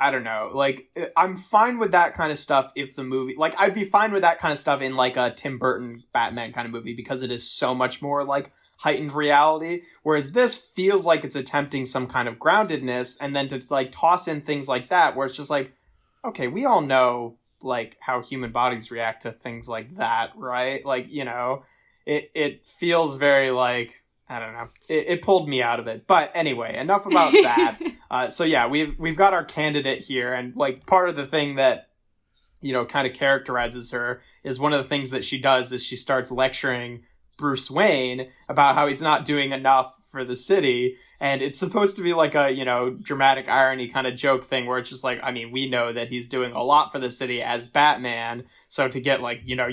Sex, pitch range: male, 125-150 Hz